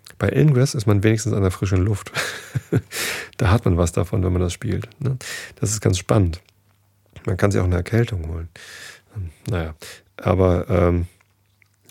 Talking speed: 160 wpm